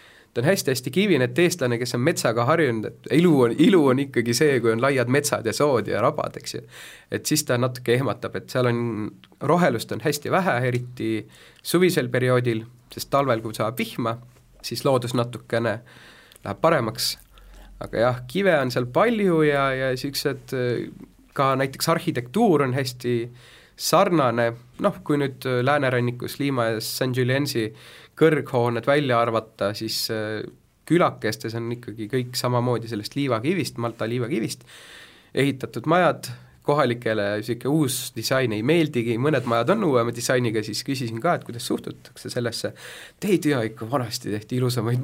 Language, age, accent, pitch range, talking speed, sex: English, 30-49, Finnish, 115-145 Hz, 145 wpm, male